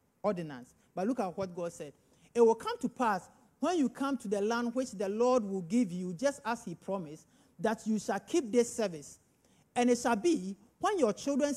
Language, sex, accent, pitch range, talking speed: English, male, Nigerian, 195-250 Hz, 215 wpm